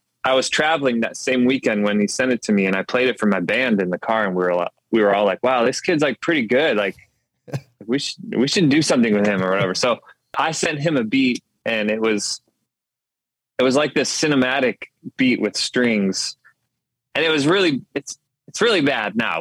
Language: English